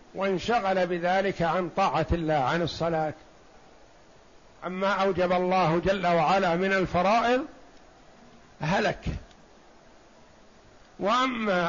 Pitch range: 180-225 Hz